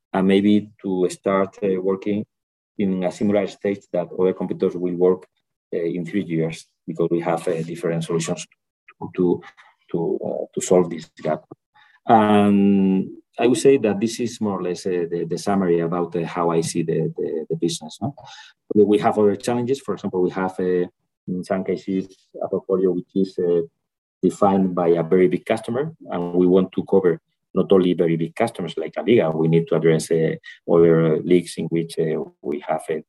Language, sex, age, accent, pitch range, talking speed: English, male, 30-49, Spanish, 85-105 Hz, 190 wpm